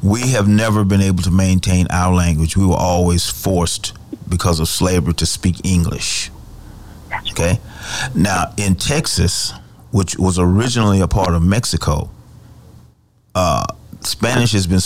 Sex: male